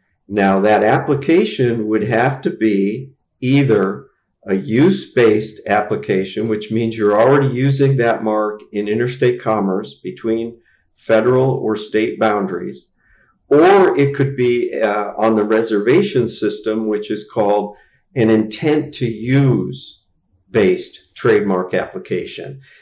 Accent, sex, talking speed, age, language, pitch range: American, male, 110 wpm, 50-69, English, 105-130 Hz